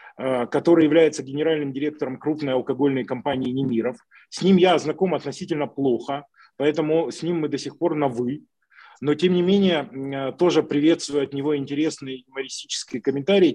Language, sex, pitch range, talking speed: Ukrainian, male, 135-180 Hz, 150 wpm